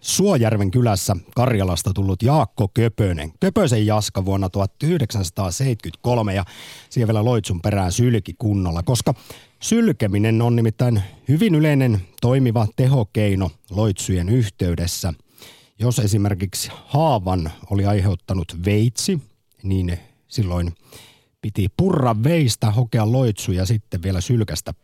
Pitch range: 95-125 Hz